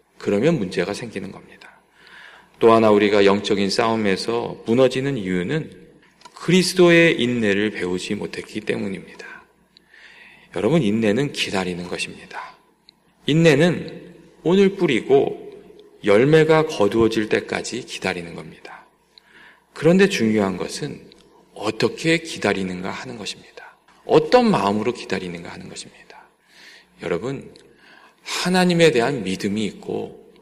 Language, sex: Korean, male